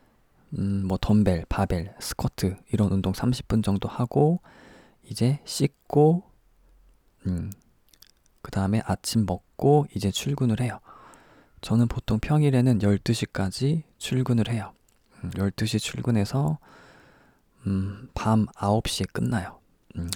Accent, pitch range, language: native, 95-125 Hz, Korean